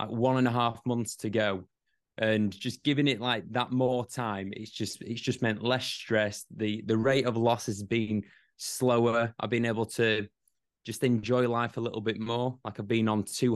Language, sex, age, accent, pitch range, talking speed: English, male, 20-39, British, 105-120 Hz, 210 wpm